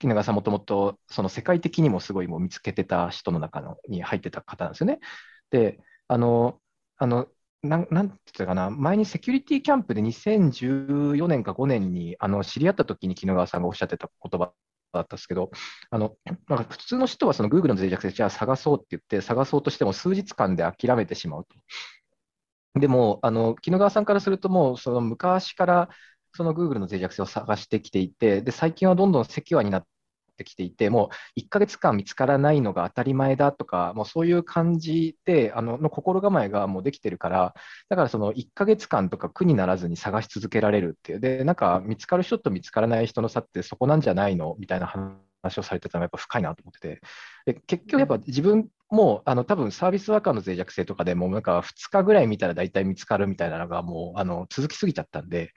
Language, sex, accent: Japanese, male, native